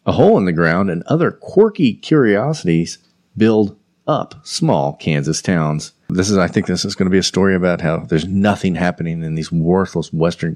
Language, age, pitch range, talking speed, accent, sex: English, 40-59, 80-95 Hz, 195 wpm, American, male